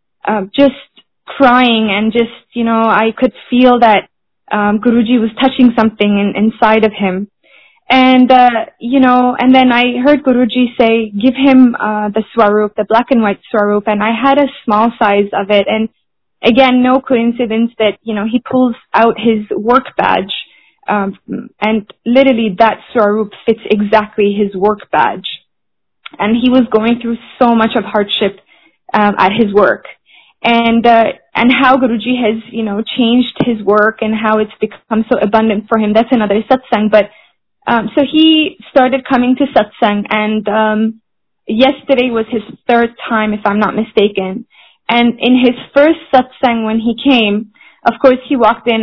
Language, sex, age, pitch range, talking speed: Hindi, female, 10-29, 215-255 Hz, 170 wpm